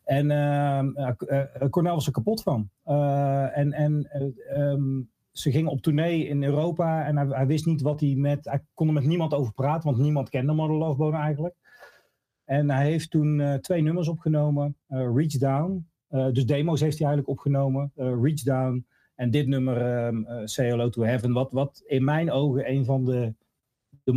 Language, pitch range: Dutch, 125-145 Hz